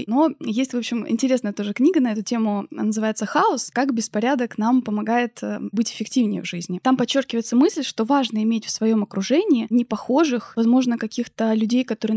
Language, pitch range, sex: Russian, 220-265 Hz, female